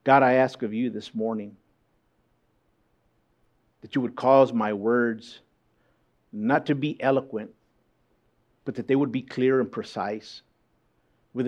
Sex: male